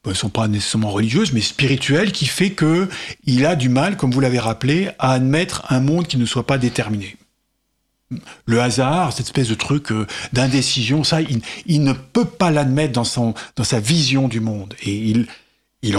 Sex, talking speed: male, 190 wpm